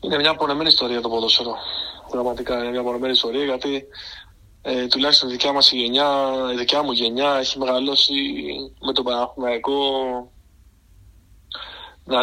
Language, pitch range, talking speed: Greek, 120-140 Hz, 145 wpm